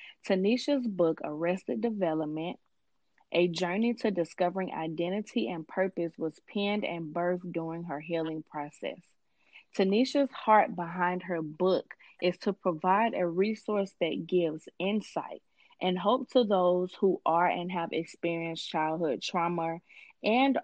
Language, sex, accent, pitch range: English, female, American, 170-215 Hz